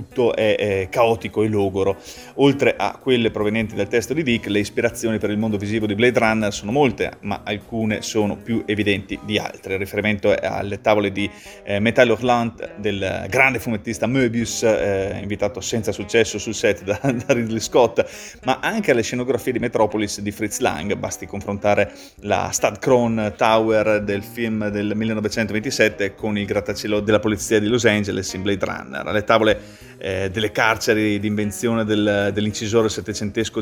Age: 30-49